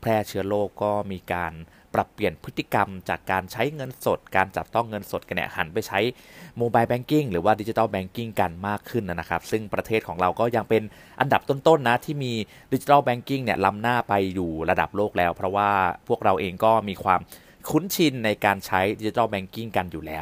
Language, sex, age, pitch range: Thai, male, 30-49, 100-135 Hz